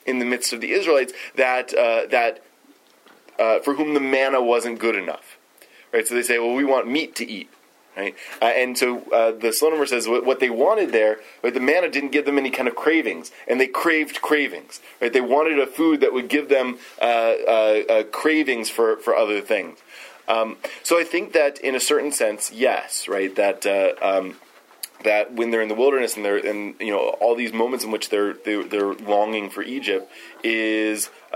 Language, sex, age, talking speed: English, male, 20-39, 210 wpm